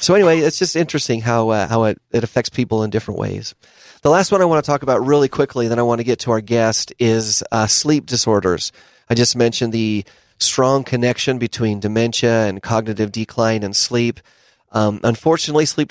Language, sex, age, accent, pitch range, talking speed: English, male, 30-49, American, 110-130 Hz, 200 wpm